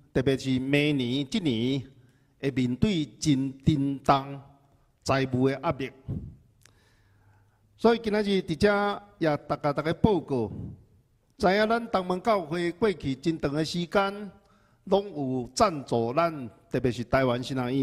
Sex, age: male, 50-69